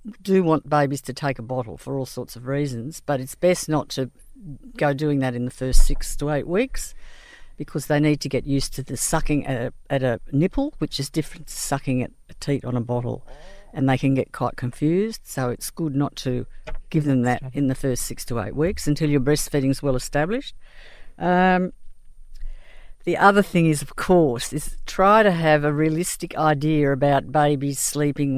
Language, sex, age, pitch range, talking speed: English, female, 50-69, 135-165 Hz, 200 wpm